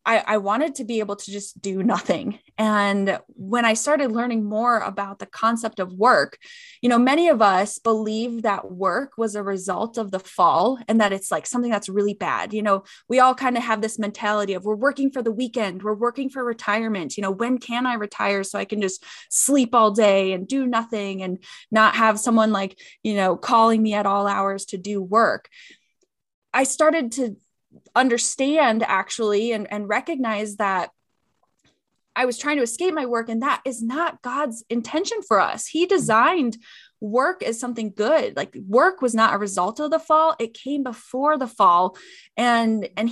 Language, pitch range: English, 210-255 Hz